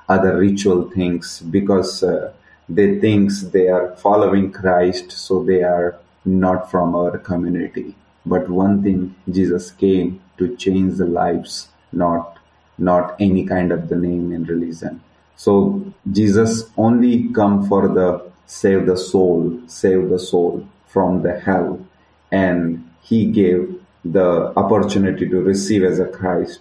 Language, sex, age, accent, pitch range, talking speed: English, male, 30-49, Indian, 90-100 Hz, 140 wpm